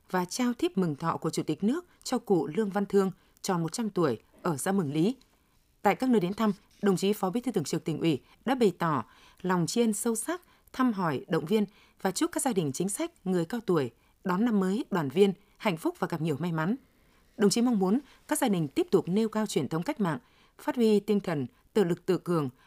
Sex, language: female, Vietnamese